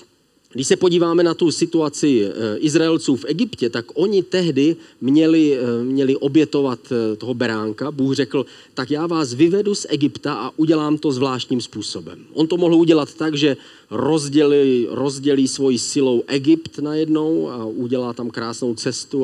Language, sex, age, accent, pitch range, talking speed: Czech, male, 40-59, native, 120-150 Hz, 145 wpm